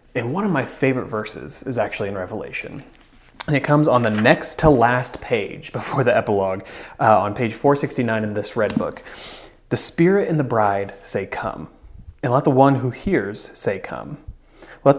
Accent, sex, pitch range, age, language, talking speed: American, male, 115-145 Hz, 20-39, English, 185 wpm